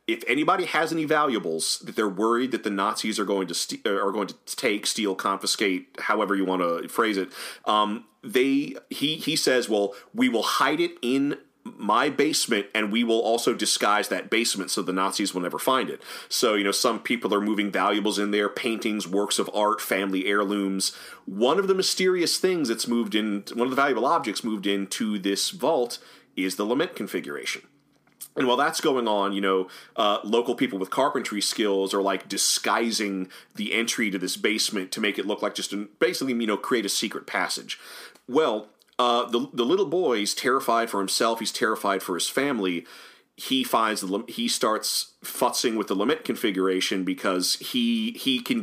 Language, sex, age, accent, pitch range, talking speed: English, male, 30-49, American, 100-125 Hz, 190 wpm